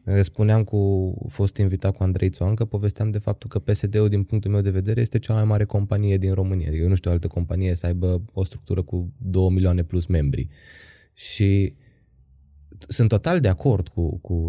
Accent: native